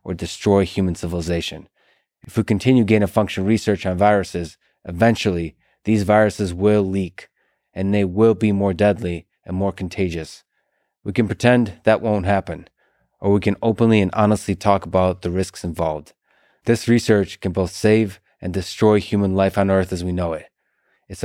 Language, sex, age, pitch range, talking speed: English, male, 20-39, 95-110 Hz, 165 wpm